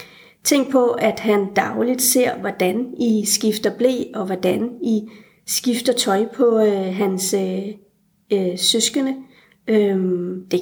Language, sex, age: Danish, female, 30-49